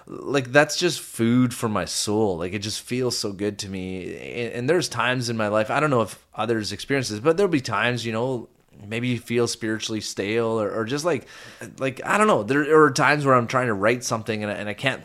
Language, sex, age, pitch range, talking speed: English, male, 20-39, 105-130 Hz, 245 wpm